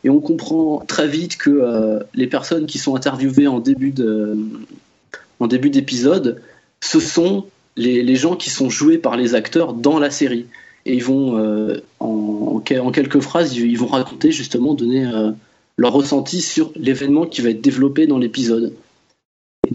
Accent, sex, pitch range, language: French, male, 120-150 Hz, French